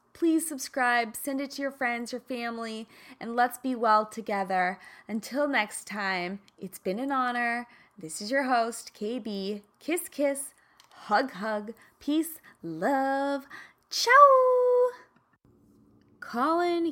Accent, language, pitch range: American, English, 205-280 Hz